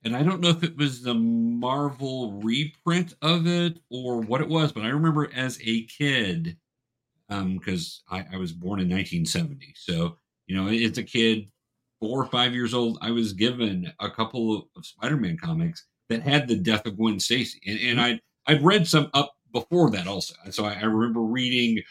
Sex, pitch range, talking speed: male, 115-155 Hz, 190 wpm